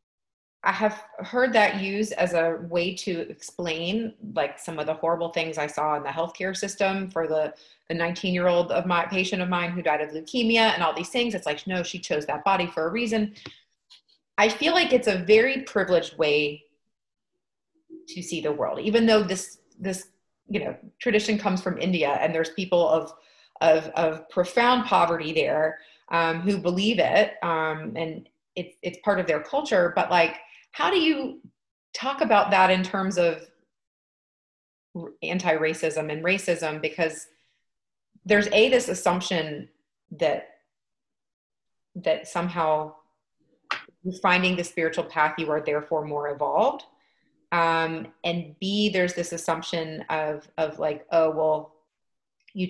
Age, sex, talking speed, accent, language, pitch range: 30-49, female, 155 wpm, American, English, 160-200 Hz